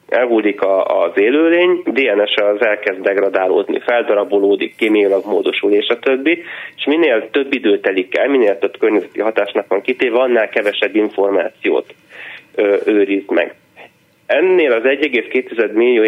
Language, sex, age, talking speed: Hungarian, male, 30-49, 125 wpm